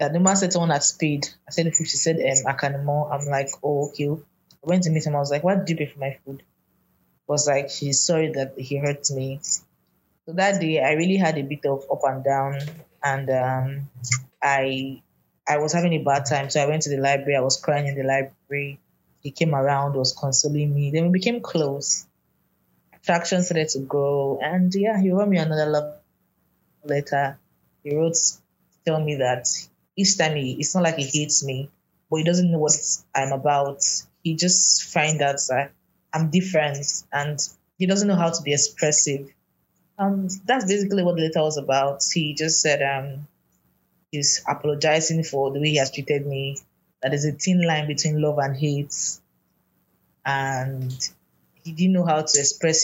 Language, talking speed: English, 195 wpm